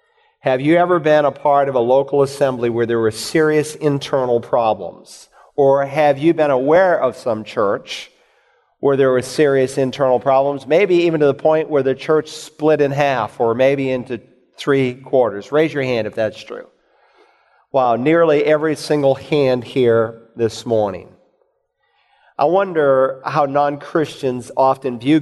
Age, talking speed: 40-59, 155 wpm